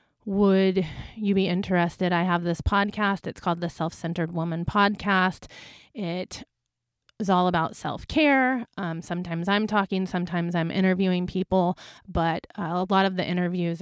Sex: female